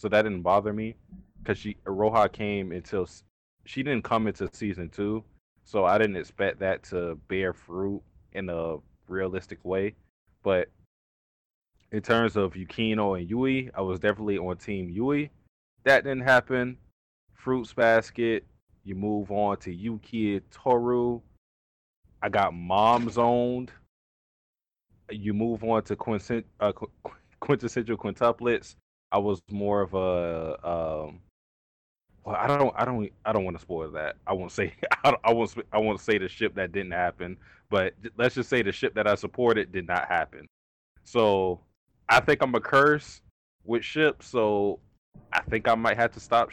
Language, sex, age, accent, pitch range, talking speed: English, male, 20-39, American, 95-115 Hz, 160 wpm